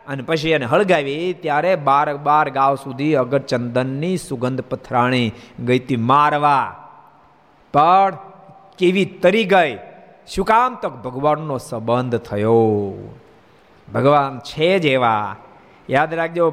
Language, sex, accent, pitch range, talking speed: Gujarati, male, native, 130-185 Hz, 100 wpm